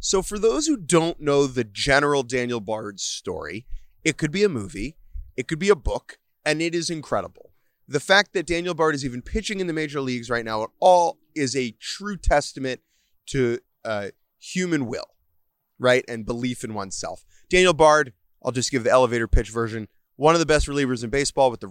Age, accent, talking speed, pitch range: 30-49, American, 200 wpm, 115-155 Hz